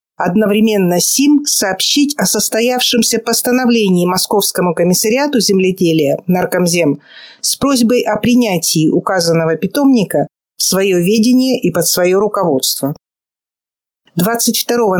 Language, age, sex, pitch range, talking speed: Russian, 50-69, female, 175-225 Hz, 95 wpm